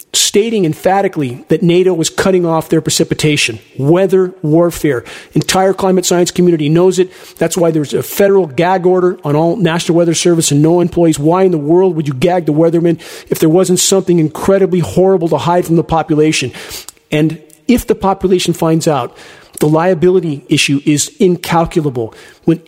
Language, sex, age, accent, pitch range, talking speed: English, male, 50-69, American, 160-190 Hz, 170 wpm